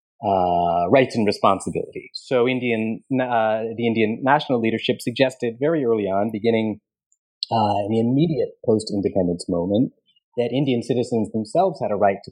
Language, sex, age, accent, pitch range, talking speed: English, male, 30-49, American, 100-130 Hz, 150 wpm